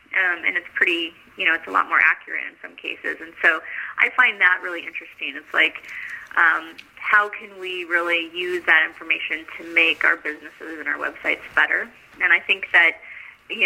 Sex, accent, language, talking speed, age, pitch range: female, American, English, 195 wpm, 20-39, 175-240 Hz